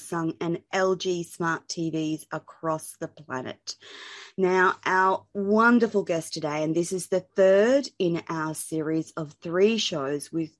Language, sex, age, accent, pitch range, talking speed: English, female, 30-49, Australian, 155-190 Hz, 140 wpm